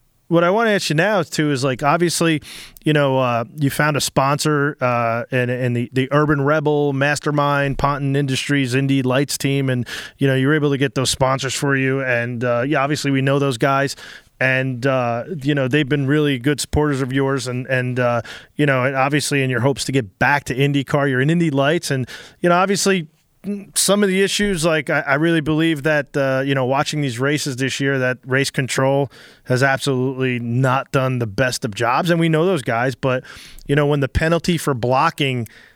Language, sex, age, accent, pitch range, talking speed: English, male, 30-49, American, 130-155 Hz, 210 wpm